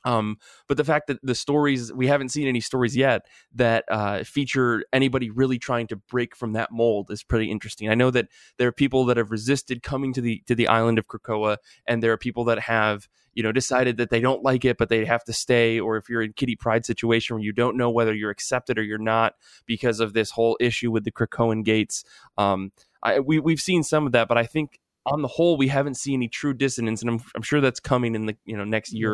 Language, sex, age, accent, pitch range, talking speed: English, male, 20-39, American, 110-130 Hz, 245 wpm